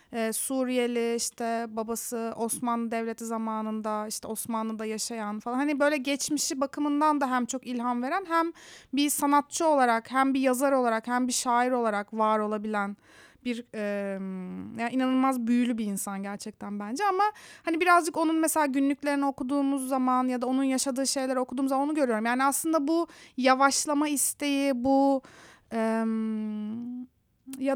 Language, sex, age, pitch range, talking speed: Turkish, female, 30-49, 225-285 Hz, 145 wpm